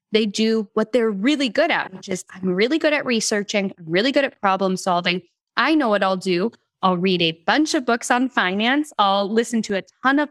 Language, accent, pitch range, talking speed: English, American, 185-255 Hz, 225 wpm